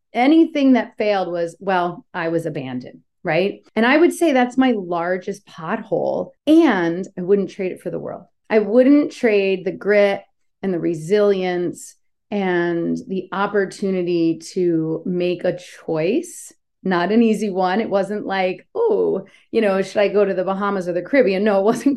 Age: 30-49